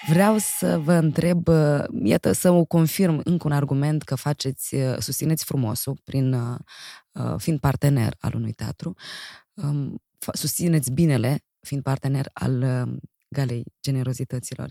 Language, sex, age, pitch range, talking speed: Romanian, female, 20-39, 130-170 Hz, 115 wpm